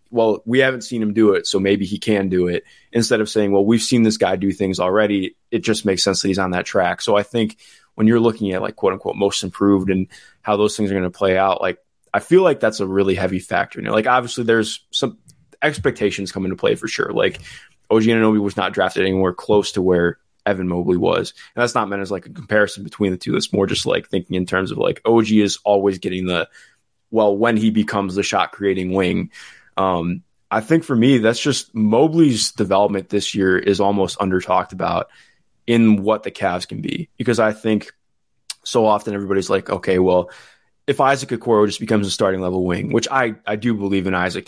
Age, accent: 20-39, American